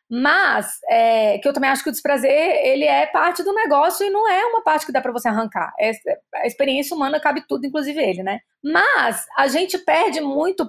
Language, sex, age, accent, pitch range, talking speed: Portuguese, female, 20-39, Brazilian, 245-320 Hz, 215 wpm